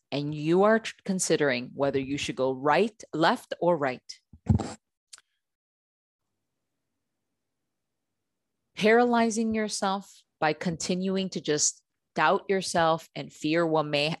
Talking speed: 100 wpm